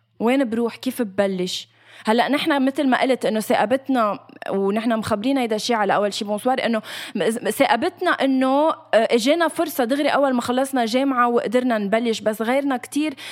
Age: 20-39